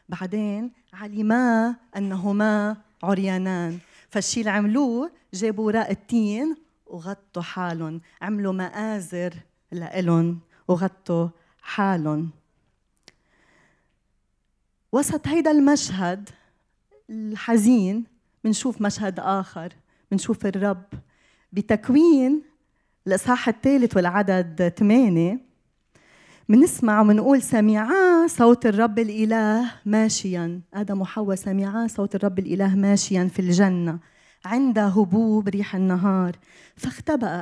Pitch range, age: 180-220 Hz, 30-49